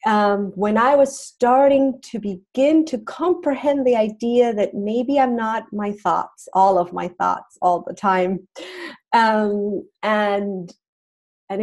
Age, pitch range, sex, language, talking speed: 40-59, 190-240 Hz, female, English, 140 wpm